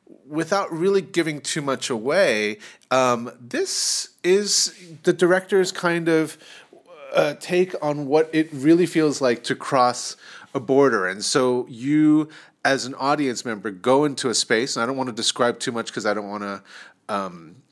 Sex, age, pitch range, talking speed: male, 30-49, 110-150 Hz, 170 wpm